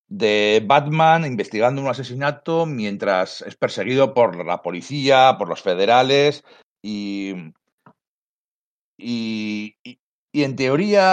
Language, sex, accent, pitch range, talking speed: Spanish, male, Spanish, 105-145 Hz, 110 wpm